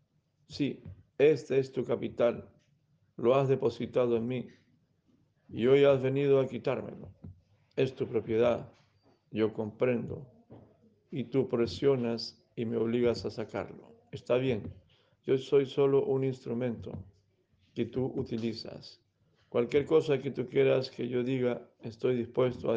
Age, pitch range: 50-69, 115-135 Hz